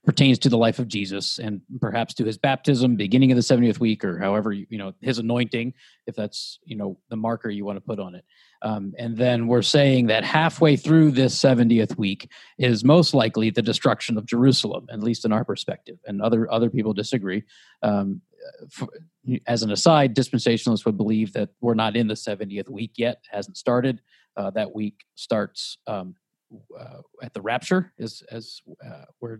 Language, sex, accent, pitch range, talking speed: English, male, American, 110-130 Hz, 190 wpm